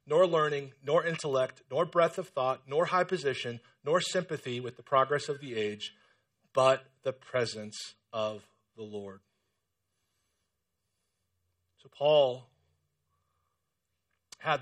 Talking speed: 115 wpm